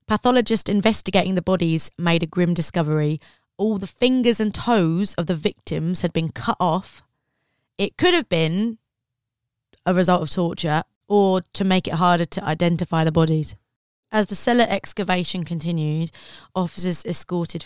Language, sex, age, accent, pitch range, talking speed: English, female, 20-39, British, 160-195 Hz, 150 wpm